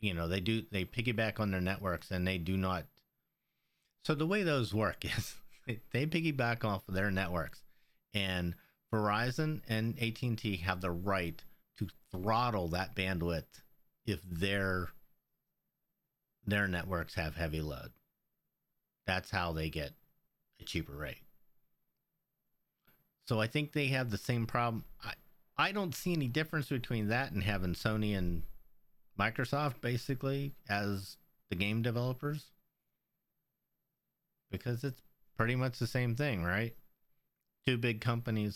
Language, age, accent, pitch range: English, 50-69, American, 85-120 Hz